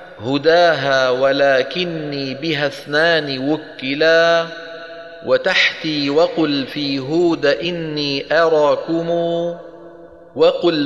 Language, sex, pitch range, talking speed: Arabic, male, 145-170 Hz, 65 wpm